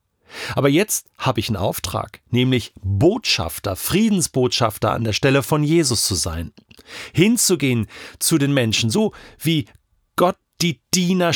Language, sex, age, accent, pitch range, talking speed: German, male, 40-59, German, 105-155 Hz, 130 wpm